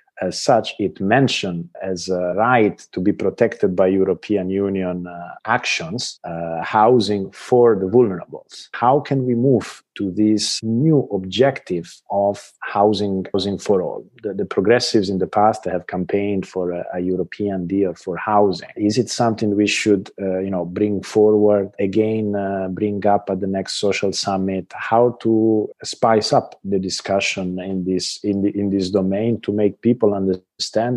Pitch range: 90-105 Hz